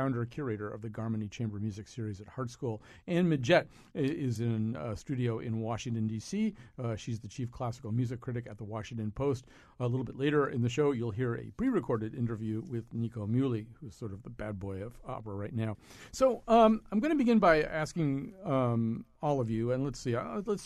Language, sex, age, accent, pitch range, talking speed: English, male, 50-69, American, 115-150 Hz, 215 wpm